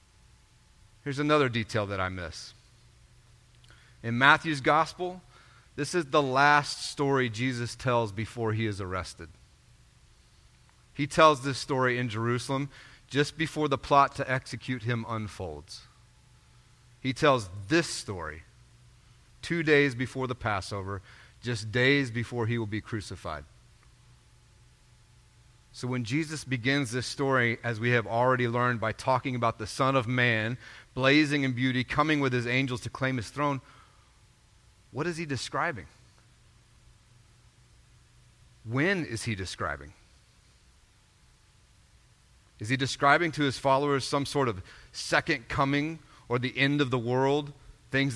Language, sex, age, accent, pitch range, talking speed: English, male, 30-49, American, 115-140 Hz, 130 wpm